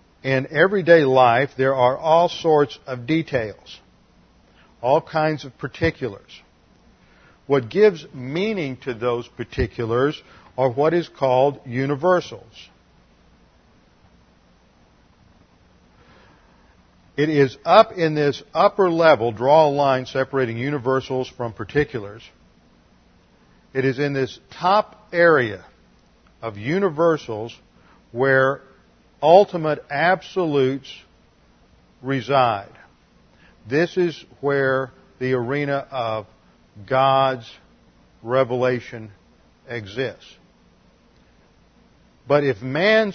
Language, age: English, 50-69